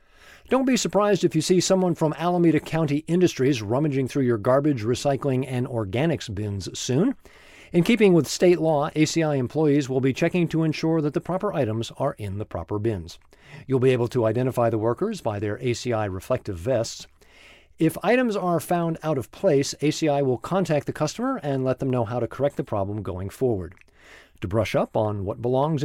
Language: English